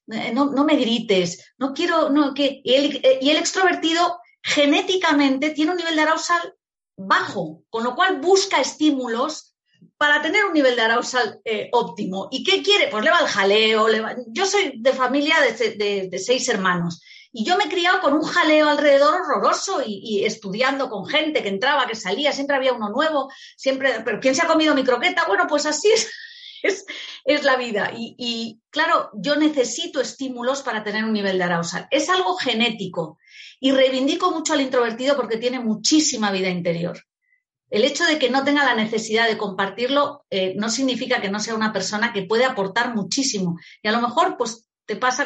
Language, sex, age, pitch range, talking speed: Spanish, female, 40-59, 210-305 Hz, 190 wpm